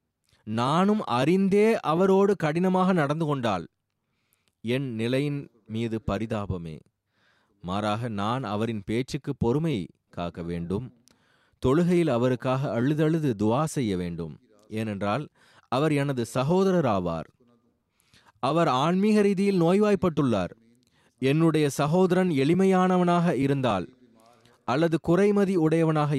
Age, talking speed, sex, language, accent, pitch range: 30-49, 90 wpm, male, Tamil, native, 110-160 Hz